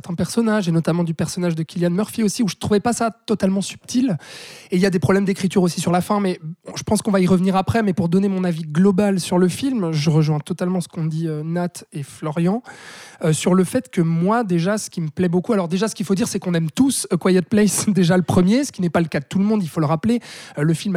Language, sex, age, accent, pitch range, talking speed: French, male, 20-39, French, 165-210 Hz, 285 wpm